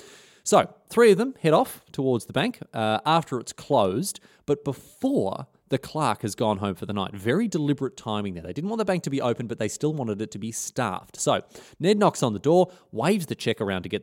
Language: English